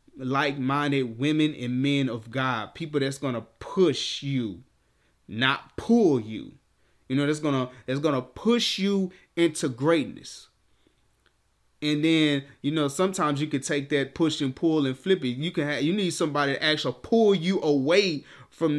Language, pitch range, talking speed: English, 135-180 Hz, 170 wpm